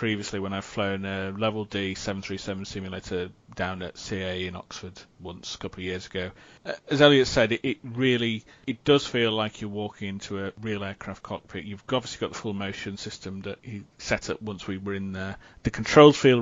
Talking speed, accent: 205 wpm, British